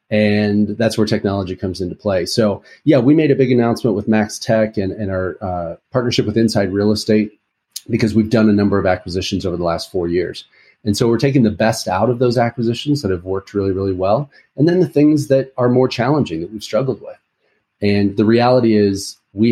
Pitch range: 95-115 Hz